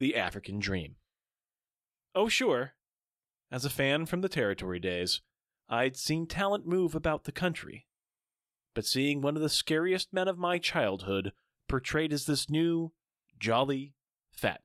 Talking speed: 145 wpm